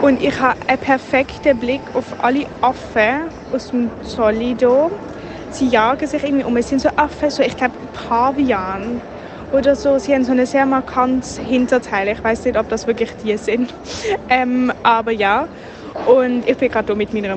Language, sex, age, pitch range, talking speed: German, female, 20-39, 220-270 Hz, 185 wpm